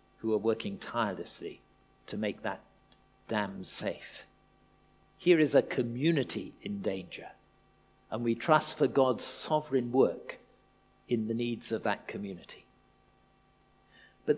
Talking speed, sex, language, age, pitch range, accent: 120 wpm, male, English, 50-69, 125-175 Hz, British